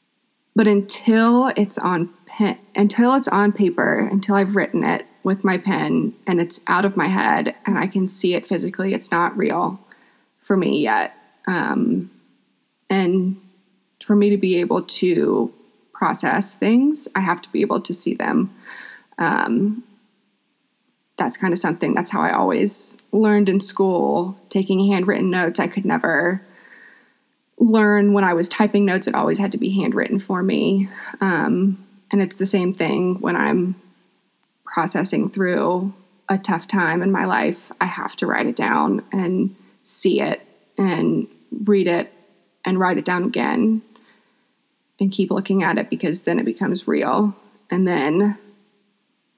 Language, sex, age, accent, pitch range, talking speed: English, female, 20-39, American, 190-220 Hz, 155 wpm